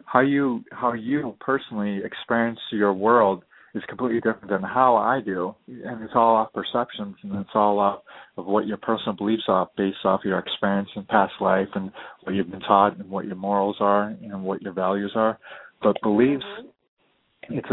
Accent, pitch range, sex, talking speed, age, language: American, 100-115 Hz, male, 185 wpm, 30-49, English